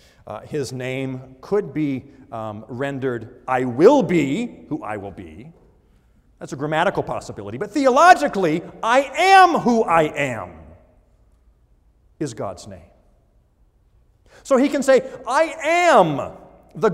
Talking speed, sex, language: 125 wpm, male, English